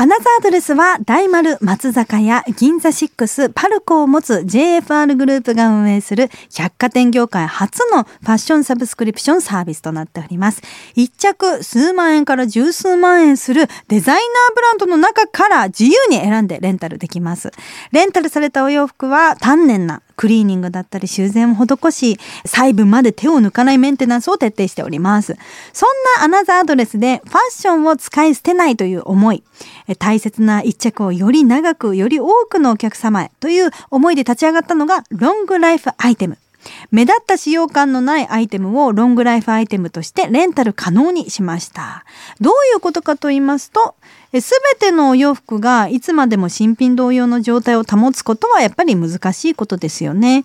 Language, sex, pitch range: Japanese, female, 205-315 Hz